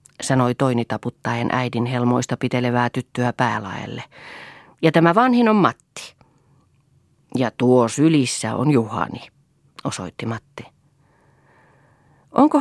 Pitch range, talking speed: 120-160 Hz, 100 wpm